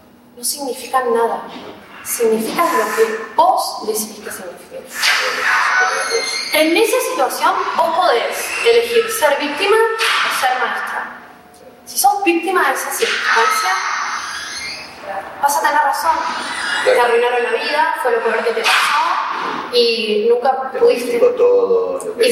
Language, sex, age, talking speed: Spanish, female, 20-39, 120 wpm